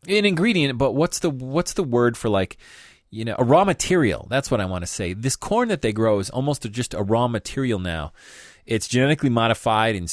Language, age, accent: English, 30-49, American